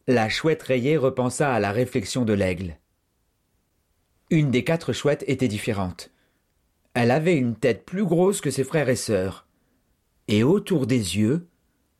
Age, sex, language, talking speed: 40-59, male, French, 150 wpm